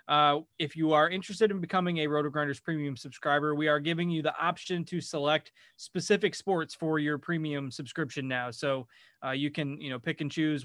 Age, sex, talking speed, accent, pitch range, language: 20-39, male, 205 wpm, American, 130-155 Hz, English